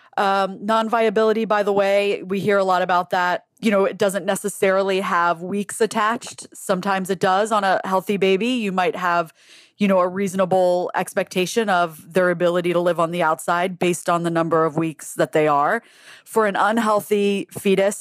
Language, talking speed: English, 185 wpm